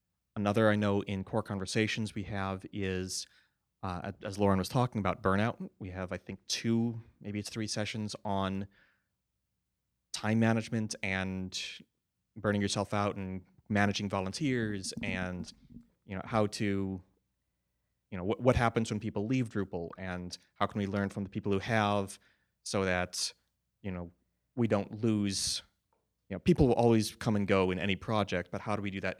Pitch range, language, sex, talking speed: 95-110 Hz, English, male, 170 wpm